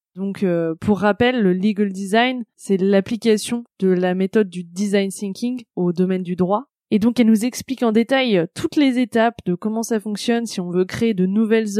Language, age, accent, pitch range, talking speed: French, 20-39, French, 195-235 Hz, 200 wpm